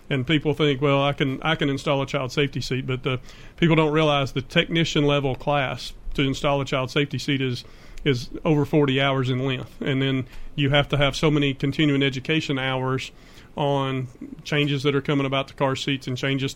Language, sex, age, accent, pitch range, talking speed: English, male, 40-59, American, 135-145 Hz, 205 wpm